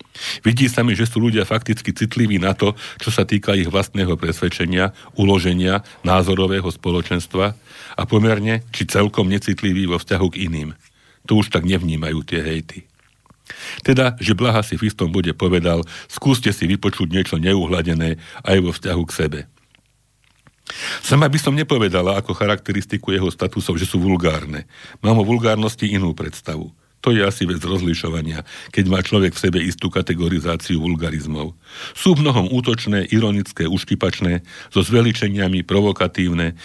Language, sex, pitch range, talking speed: Slovak, male, 90-110 Hz, 145 wpm